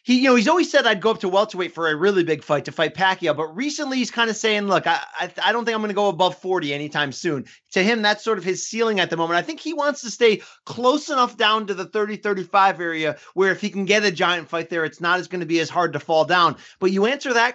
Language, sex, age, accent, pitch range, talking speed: English, male, 30-49, American, 185-245 Hz, 295 wpm